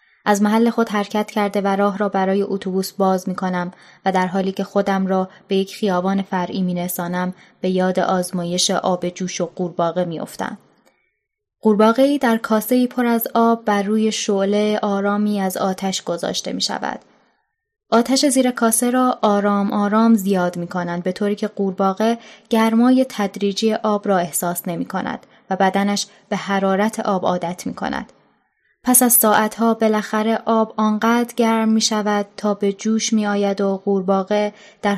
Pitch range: 190-220 Hz